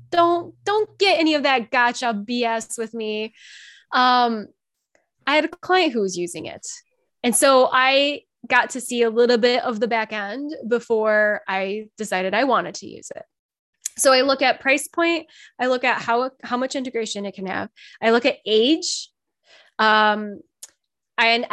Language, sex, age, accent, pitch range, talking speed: English, female, 10-29, American, 215-265 Hz, 175 wpm